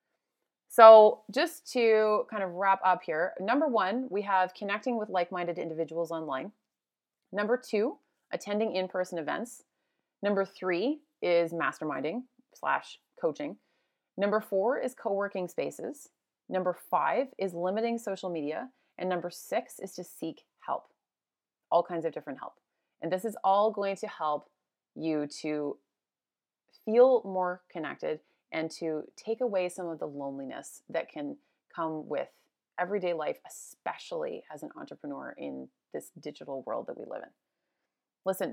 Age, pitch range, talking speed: 30-49, 175-240 Hz, 145 wpm